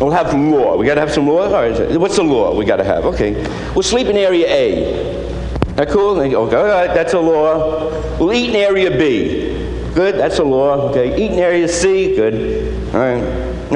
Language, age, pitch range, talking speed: English, 60-79, 155-245 Hz, 210 wpm